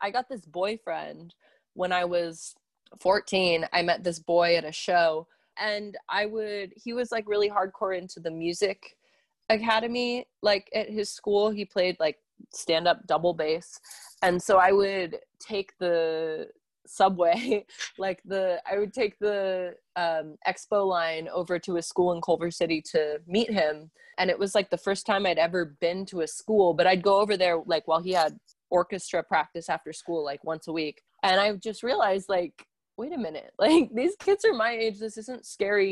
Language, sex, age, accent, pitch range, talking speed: English, female, 20-39, American, 160-200 Hz, 185 wpm